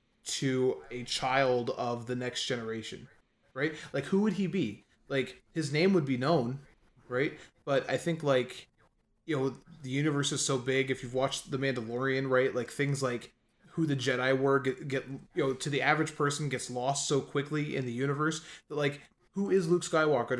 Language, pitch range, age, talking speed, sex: English, 125-145 Hz, 20-39, 190 wpm, male